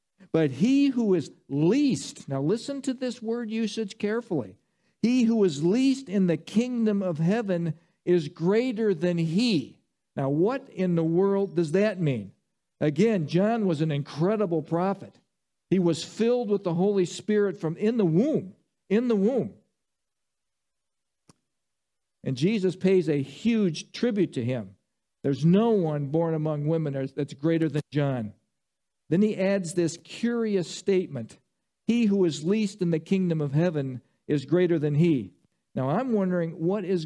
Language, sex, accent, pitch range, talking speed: English, male, American, 155-205 Hz, 155 wpm